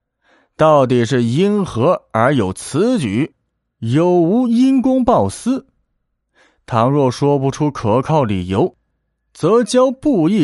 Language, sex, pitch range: Chinese, male, 110-170 Hz